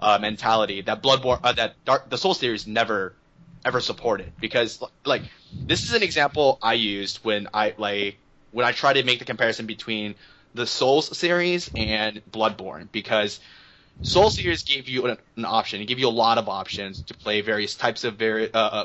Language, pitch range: English, 105-135 Hz